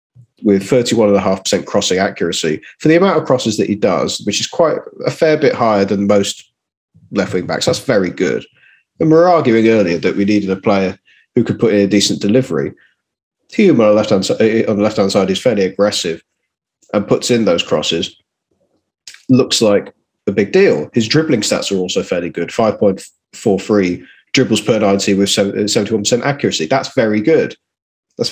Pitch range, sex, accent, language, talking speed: 95-125 Hz, male, British, English, 170 wpm